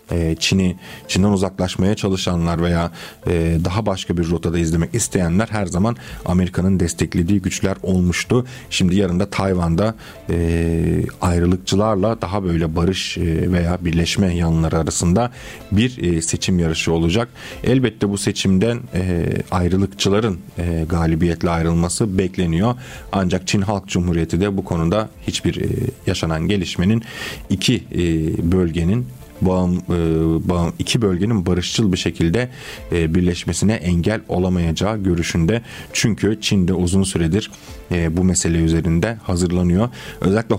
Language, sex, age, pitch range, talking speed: Turkish, male, 40-59, 85-105 Hz, 105 wpm